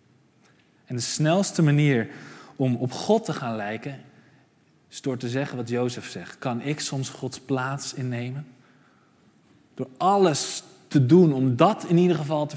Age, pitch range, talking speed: 20-39, 115-150 Hz, 160 wpm